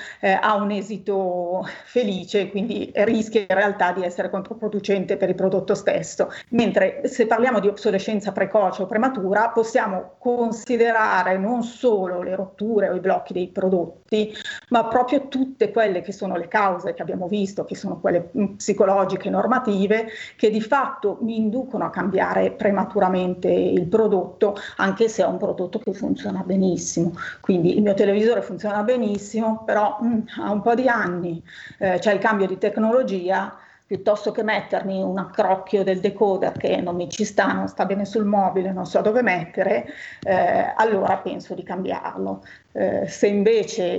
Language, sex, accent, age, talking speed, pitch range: Italian, female, native, 30-49, 160 wpm, 190-220 Hz